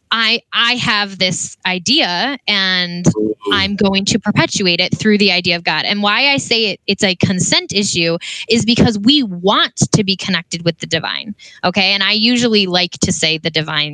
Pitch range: 180-230 Hz